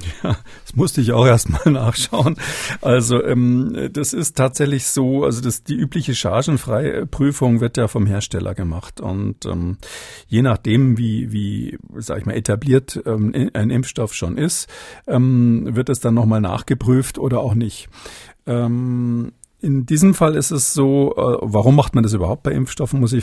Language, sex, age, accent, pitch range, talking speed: German, male, 50-69, German, 110-125 Hz, 165 wpm